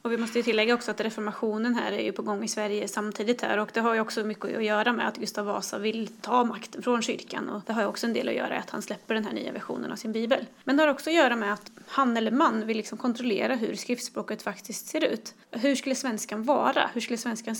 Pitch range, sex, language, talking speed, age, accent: 215-265 Hz, female, Swedish, 275 wpm, 20-39, native